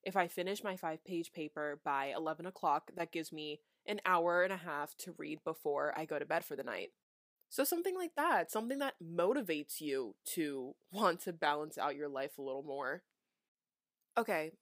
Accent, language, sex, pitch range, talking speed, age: American, English, female, 160-200 Hz, 190 wpm, 20-39